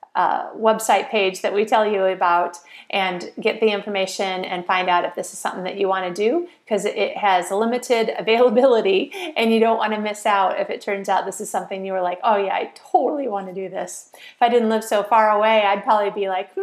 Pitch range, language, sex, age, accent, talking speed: 190-245 Hz, English, female, 30-49, American, 235 wpm